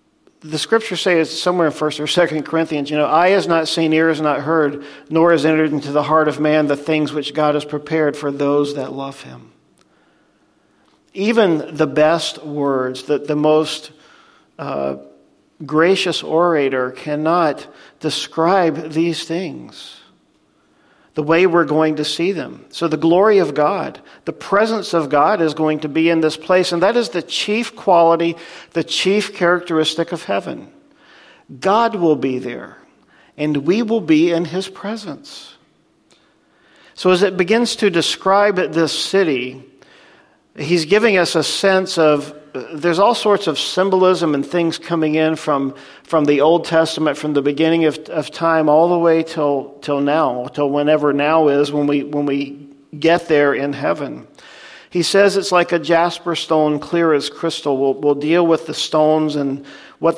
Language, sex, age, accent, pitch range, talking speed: English, male, 50-69, American, 150-170 Hz, 165 wpm